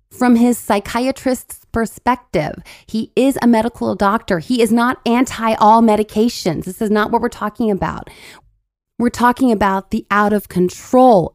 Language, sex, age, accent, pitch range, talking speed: English, female, 30-49, American, 180-230 Hz, 145 wpm